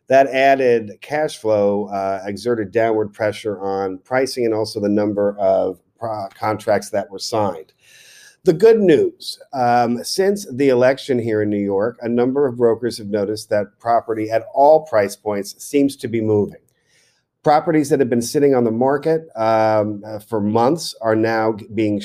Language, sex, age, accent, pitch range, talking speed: English, male, 40-59, American, 105-130 Hz, 165 wpm